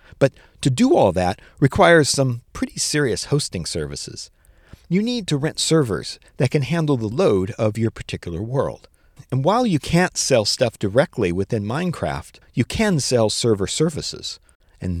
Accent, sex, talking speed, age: American, male, 160 wpm, 50-69